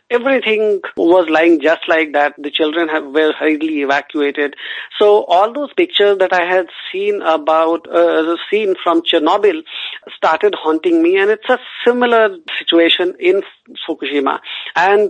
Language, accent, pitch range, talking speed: English, Indian, 165-265 Hz, 140 wpm